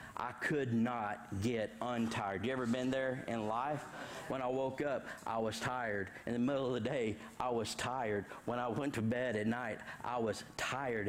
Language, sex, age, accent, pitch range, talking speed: English, male, 50-69, American, 105-125 Hz, 200 wpm